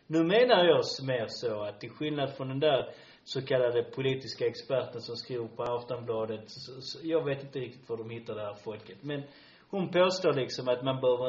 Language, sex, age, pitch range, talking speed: Swedish, male, 30-49, 120-170 Hz, 185 wpm